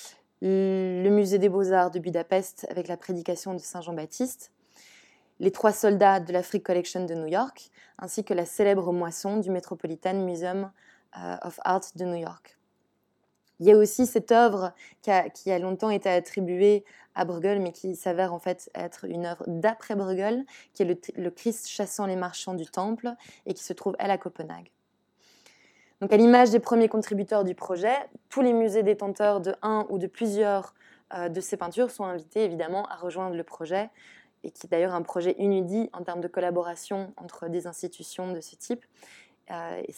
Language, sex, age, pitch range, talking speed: French, female, 20-39, 180-210 Hz, 180 wpm